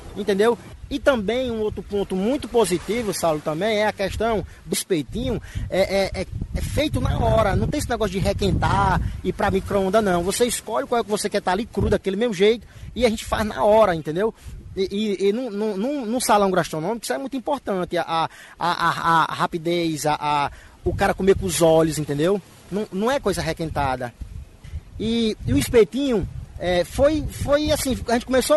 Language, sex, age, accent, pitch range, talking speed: Portuguese, male, 20-39, Brazilian, 170-230 Hz, 200 wpm